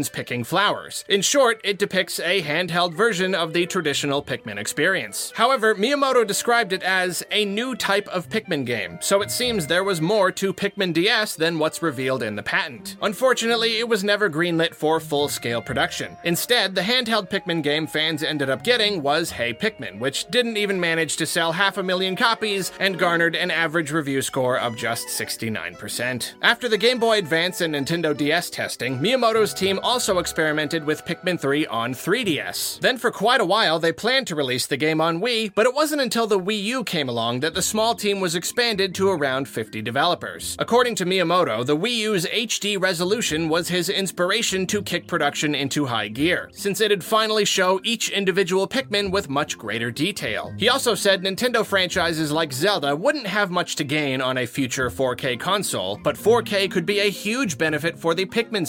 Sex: male